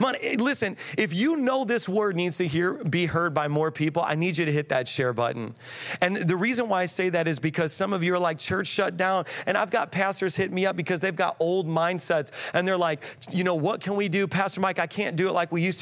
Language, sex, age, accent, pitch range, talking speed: English, male, 40-59, American, 140-180 Hz, 260 wpm